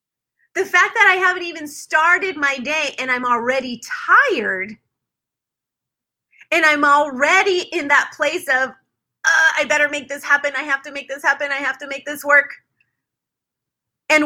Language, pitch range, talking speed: English, 260-340 Hz, 165 wpm